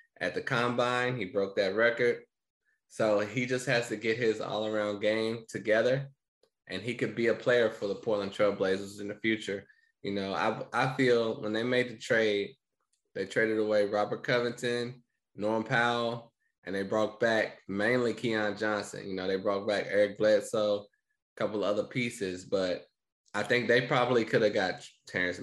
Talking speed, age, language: 175 wpm, 20-39, English